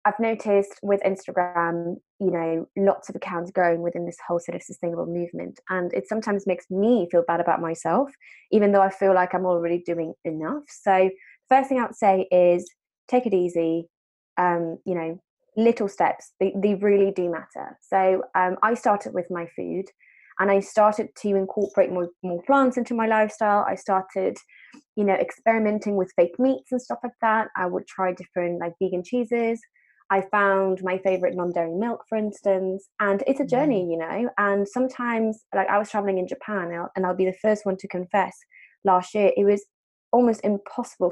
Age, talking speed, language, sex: 20-39, 190 wpm, English, female